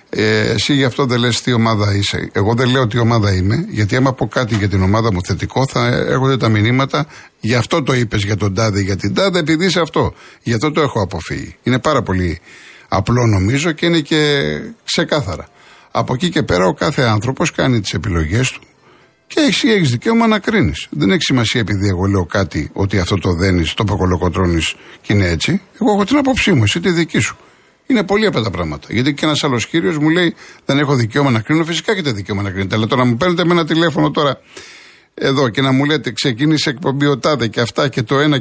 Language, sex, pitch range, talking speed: Greek, male, 110-150 Hz, 220 wpm